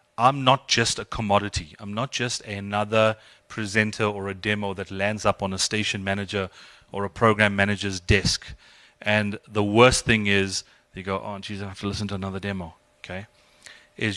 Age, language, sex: 30-49, English, male